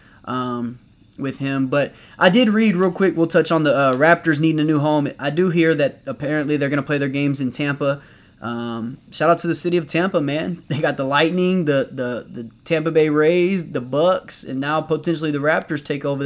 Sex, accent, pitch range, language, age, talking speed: male, American, 145-180 Hz, English, 20-39, 220 wpm